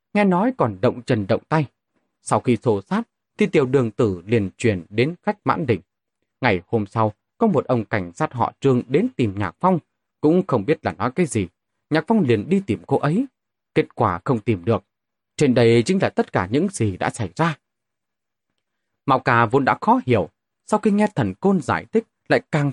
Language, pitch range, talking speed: Vietnamese, 110-155 Hz, 210 wpm